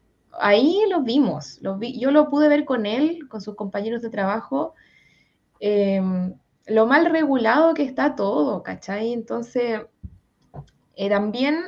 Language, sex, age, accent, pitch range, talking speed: Spanish, female, 20-39, Argentinian, 210-275 Hz, 140 wpm